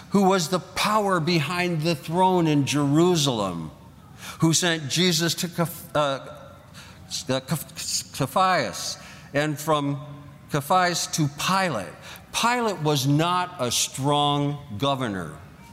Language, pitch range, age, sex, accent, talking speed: English, 140-180 Hz, 50-69, male, American, 100 wpm